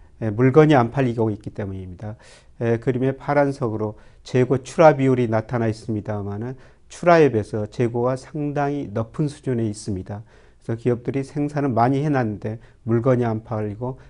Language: Korean